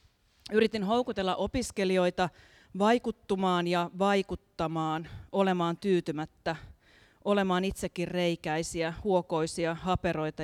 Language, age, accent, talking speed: Finnish, 30-49, native, 75 wpm